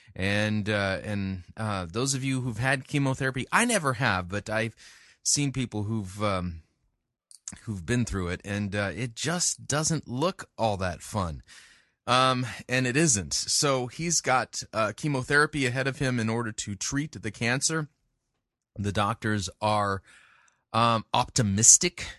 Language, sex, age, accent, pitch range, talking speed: English, male, 30-49, American, 100-135 Hz, 150 wpm